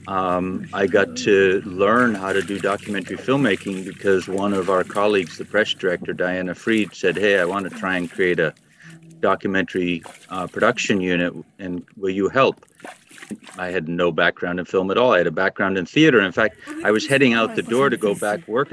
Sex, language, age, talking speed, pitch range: male, English, 40-59, 200 wpm, 100-150 Hz